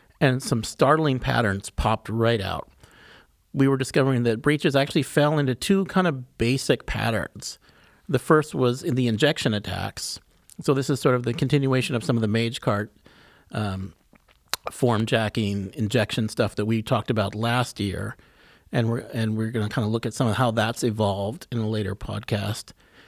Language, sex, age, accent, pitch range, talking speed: English, male, 50-69, American, 110-135 Hz, 180 wpm